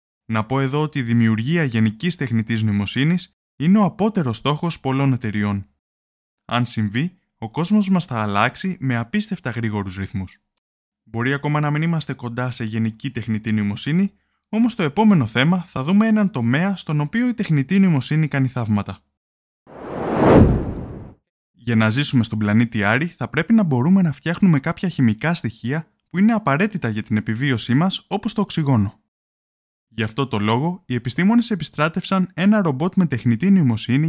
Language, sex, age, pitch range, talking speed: Greek, male, 20-39, 110-175 Hz, 155 wpm